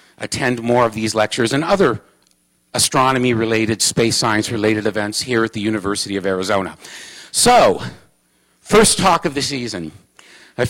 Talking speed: 145 wpm